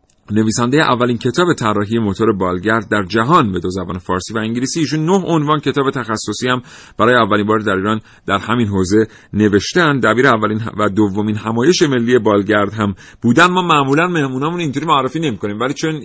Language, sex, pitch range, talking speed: Persian, male, 100-125 Hz, 170 wpm